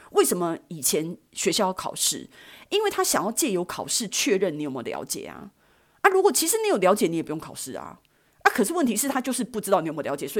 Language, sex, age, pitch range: Chinese, female, 30-49, 165-250 Hz